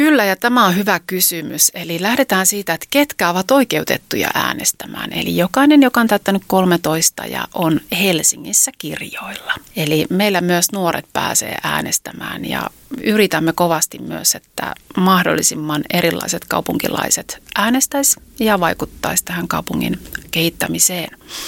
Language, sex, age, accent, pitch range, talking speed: Finnish, female, 30-49, native, 175-220 Hz, 125 wpm